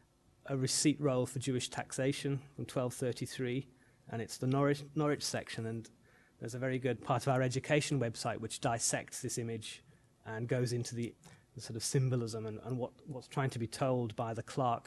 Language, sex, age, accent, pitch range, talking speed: English, male, 30-49, British, 115-135 Hz, 185 wpm